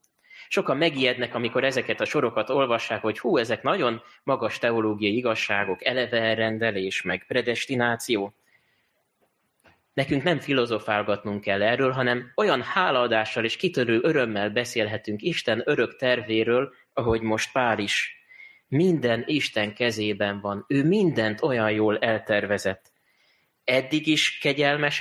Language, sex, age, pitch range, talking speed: Hungarian, male, 20-39, 110-135 Hz, 120 wpm